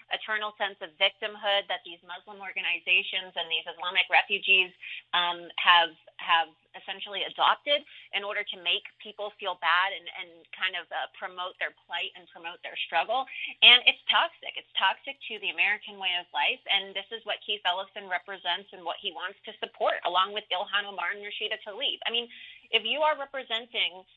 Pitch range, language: 180-215 Hz, English